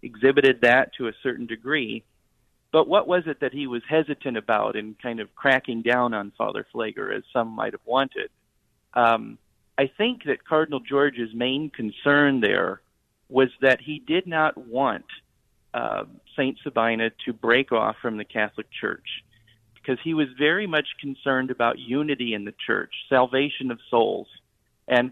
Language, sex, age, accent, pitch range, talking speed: English, male, 40-59, American, 115-145 Hz, 160 wpm